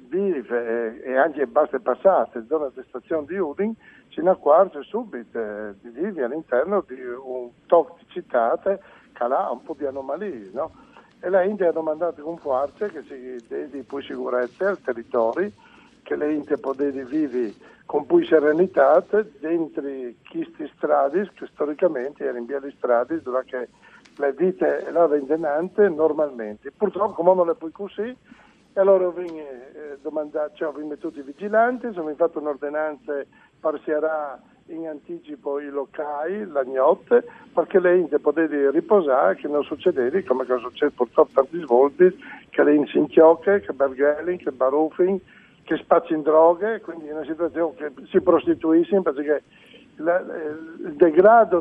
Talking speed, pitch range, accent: 150 wpm, 140-190 Hz, native